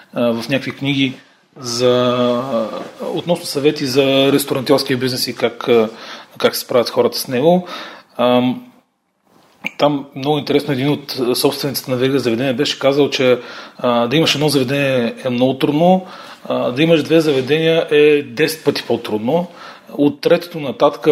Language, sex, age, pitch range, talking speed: Bulgarian, male, 30-49, 125-155 Hz, 145 wpm